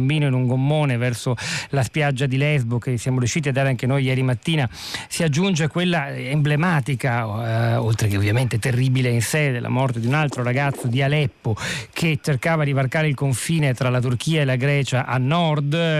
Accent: native